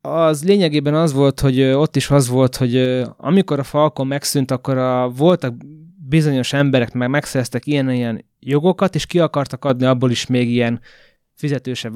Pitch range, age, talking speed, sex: 125-150 Hz, 20-39, 155 wpm, male